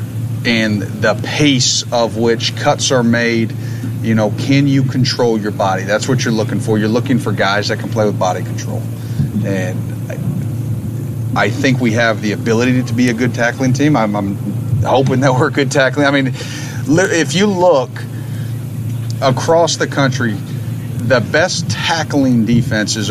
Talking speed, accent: 165 wpm, American